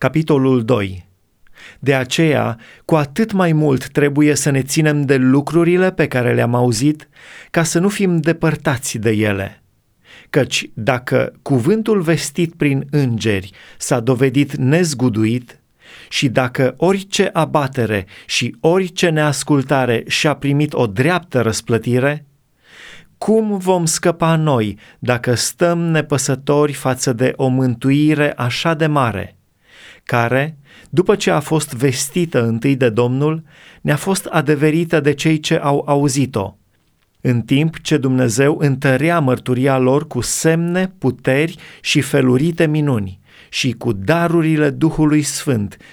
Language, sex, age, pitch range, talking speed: Romanian, male, 30-49, 125-155 Hz, 125 wpm